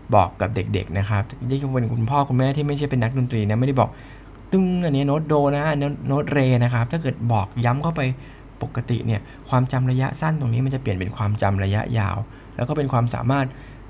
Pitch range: 110-140 Hz